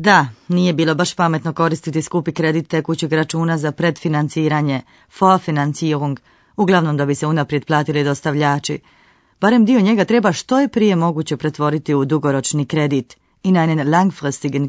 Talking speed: 145 wpm